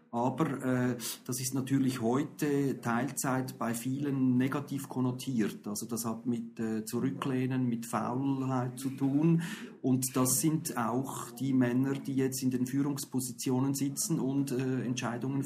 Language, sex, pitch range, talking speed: German, male, 115-135 Hz, 140 wpm